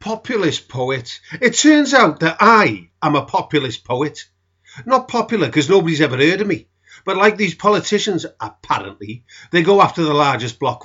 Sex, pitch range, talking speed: male, 120-170 Hz, 165 wpm